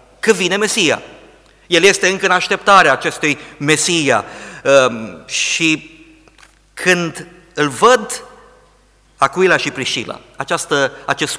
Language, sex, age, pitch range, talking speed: Romanian, male, 50-69, 130-160 Hz, 95 wpm